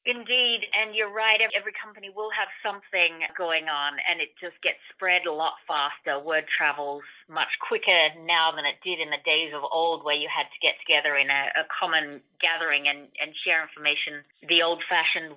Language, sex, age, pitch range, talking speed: English, female, 30-49, 150-200 Hz, 195 wpm